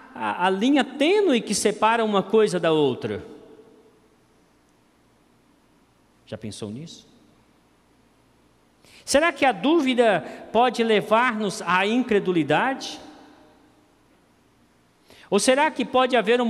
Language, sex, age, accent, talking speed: Portuguese, male, 50-69, Brazilian, 100 wpm